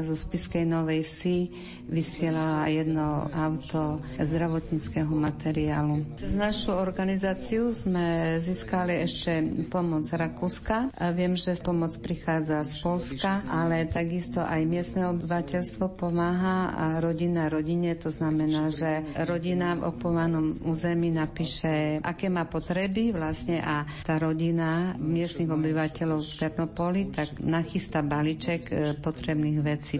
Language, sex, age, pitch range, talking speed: Slovak, female, 50-69, 155-175 Hz, 115 wpm